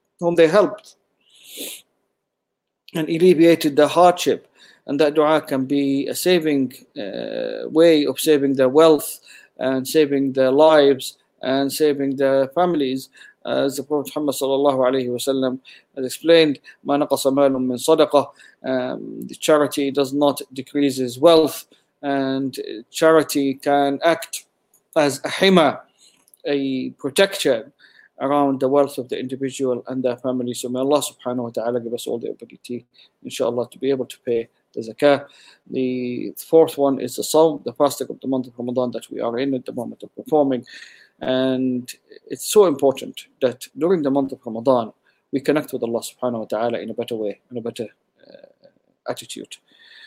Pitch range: 130-155 Hz